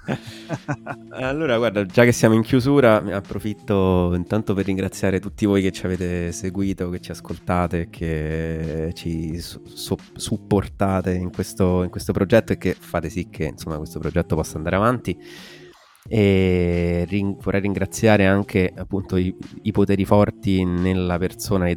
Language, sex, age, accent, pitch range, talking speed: Italian, male, 20-39, native, 85-105 Hz, 150 wpm